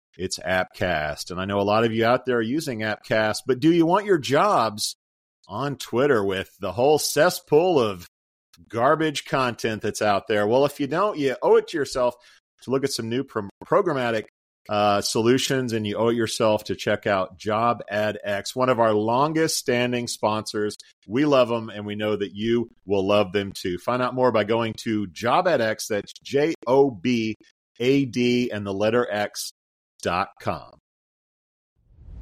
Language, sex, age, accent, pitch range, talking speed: English, male, 40-59, American, 100-125 Hz, 165 wpm